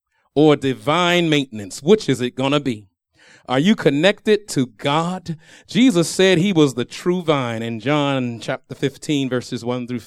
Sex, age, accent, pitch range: male, 40-59, American, 130-195 Hz